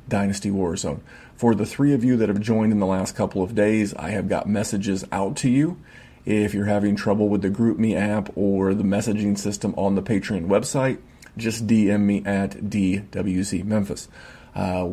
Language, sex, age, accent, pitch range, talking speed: English, male, 30-49, American, 100-115 Hz, 180 wpm